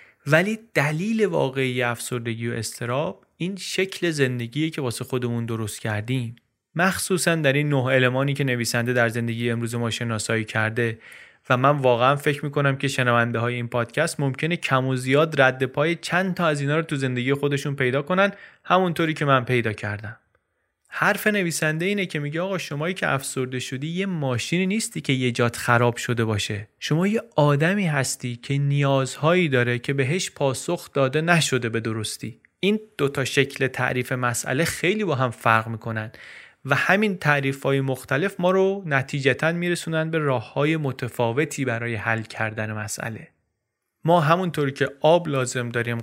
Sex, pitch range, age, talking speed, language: male, 120-160 Hz, 30-49, 160 wpm, Persian